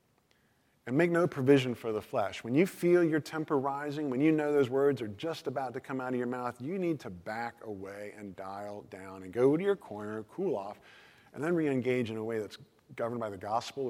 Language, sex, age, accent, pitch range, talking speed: English, male, 40-59, American, 110-150 Hz, 230 wpm